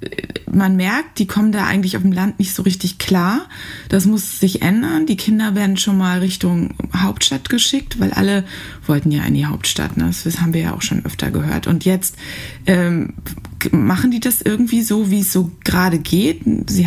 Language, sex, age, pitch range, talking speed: German, female, 20-39, 175-220 Hz, 190 wpm